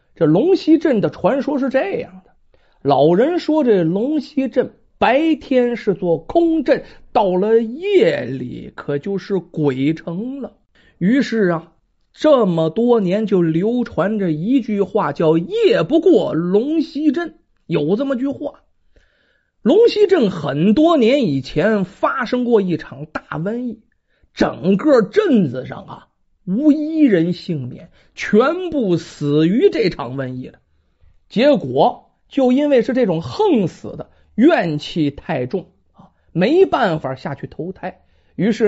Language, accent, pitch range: Chinese, native, 165-280 Hz